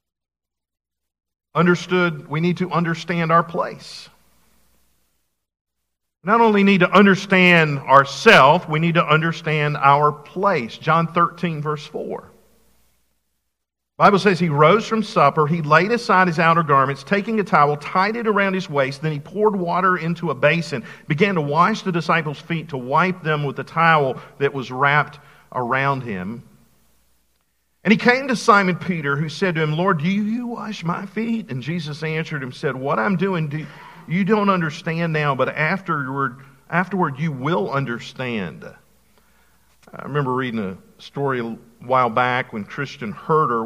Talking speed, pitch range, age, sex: 155 wpm, 125-175 Hz, 50-69, male